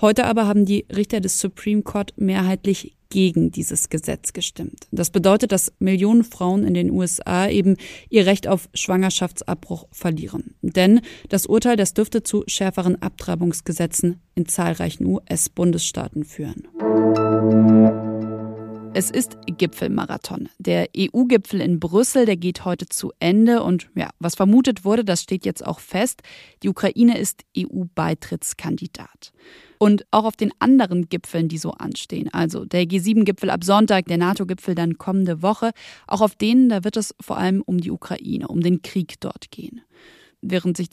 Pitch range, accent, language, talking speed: 175-215 Hz, German, German, 150 wpm